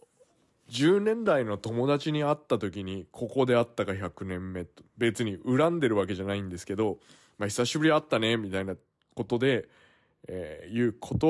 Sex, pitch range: male, 100-135 Hz